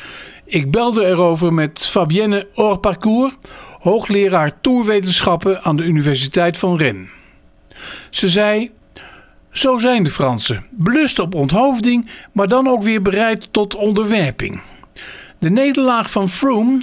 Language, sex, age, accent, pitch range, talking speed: Dutch, male, 50-69, Dutch, 170-225 Hz, 120 wpm